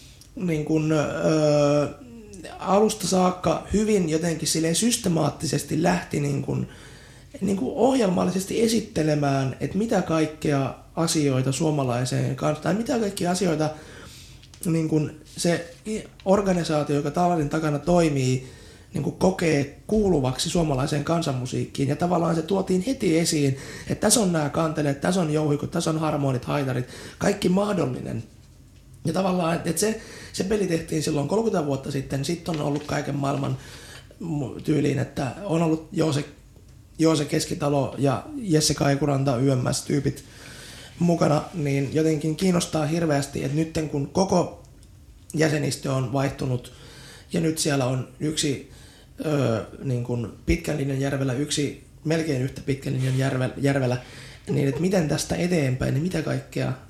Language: Finnish